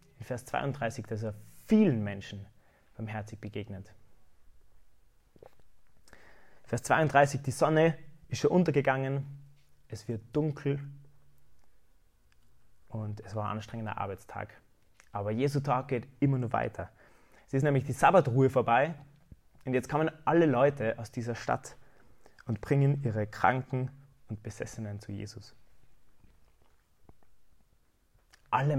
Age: 20-39